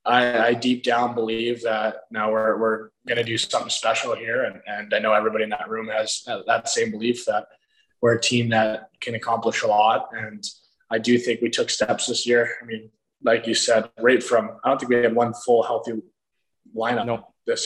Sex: male